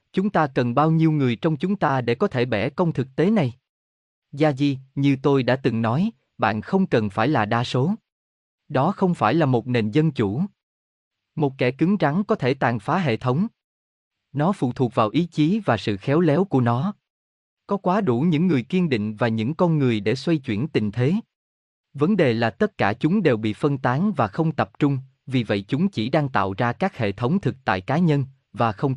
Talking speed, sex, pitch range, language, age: 220 wpm, male, 110-155 Hz, Vietnamese, 20-39